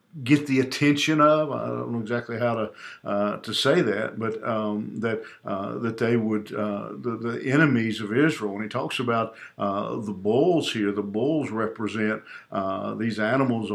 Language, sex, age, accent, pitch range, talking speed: English, male, 50-69, American, 100-115 Hz, 180 wpm